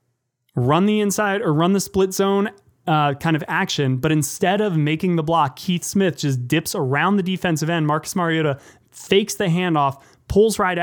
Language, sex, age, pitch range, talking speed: English, male, 20-39, 135-175 Hz, 185 wpm